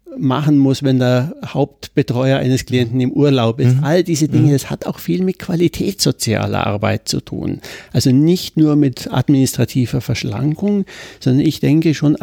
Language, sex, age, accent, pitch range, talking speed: German, male, 60-79, German, 120-150 Hz, 160 wpm